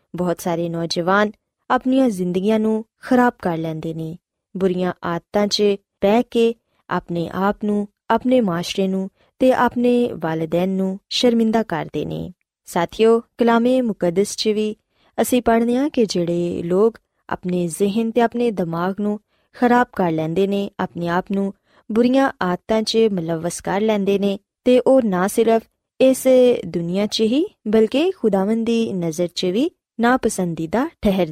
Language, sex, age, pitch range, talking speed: Punjabi, female, 20-39, 180-235 Hz, 75 wpm